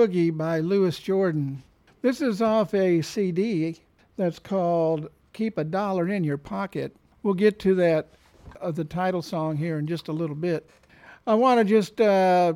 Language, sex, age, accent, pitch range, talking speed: English, male, 60-79, American, 175-220 Hz, 170 wpm